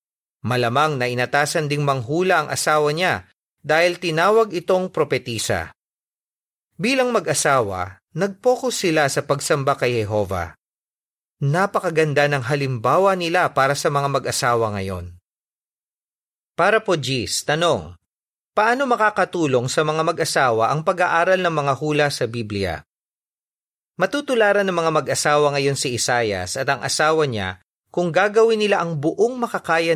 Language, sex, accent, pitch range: Filipino, male, native, 130-185 Hz